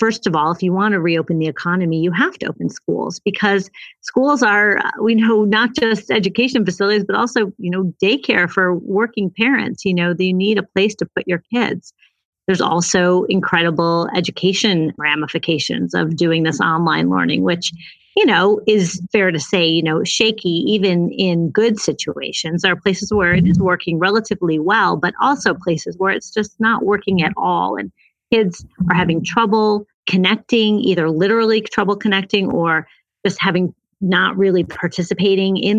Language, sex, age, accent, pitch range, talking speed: English, female, 40-59, American, 175-210 Hz, 170 wpm